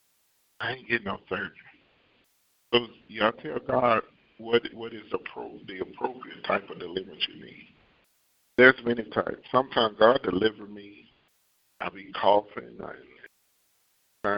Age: 50-69